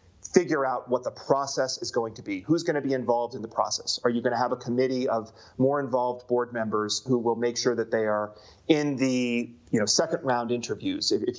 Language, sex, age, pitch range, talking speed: English, male, 30-49, 110-140 Hz, 235 wpm